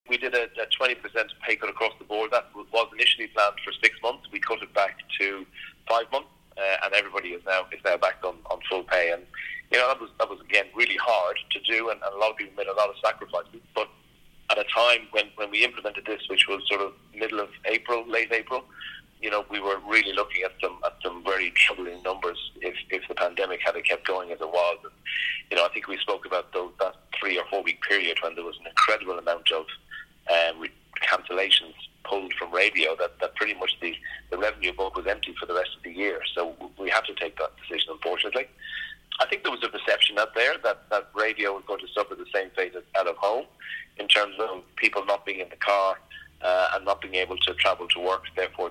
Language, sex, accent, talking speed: English, male, British, 235 wpm